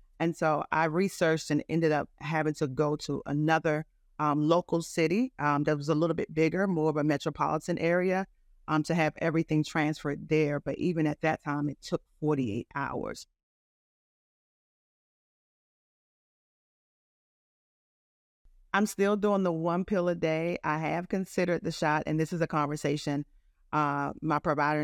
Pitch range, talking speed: 150-170 Hz, 150 wpm